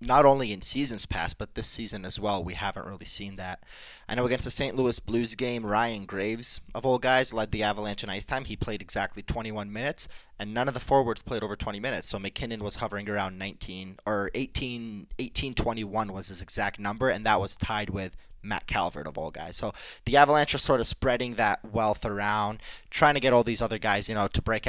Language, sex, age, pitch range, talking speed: English, male, 20-39, 100-120 Hz, 220 wpm